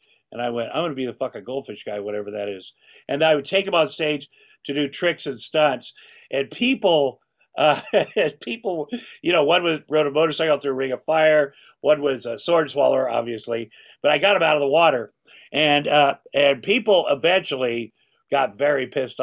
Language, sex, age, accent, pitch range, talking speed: English, male, 50-69, American, 135-165 Hz, 200 wpm